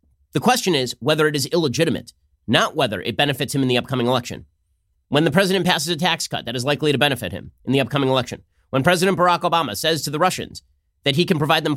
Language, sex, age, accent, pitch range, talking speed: English, male, 30-49, American, 105-150 Hz, 235 wpm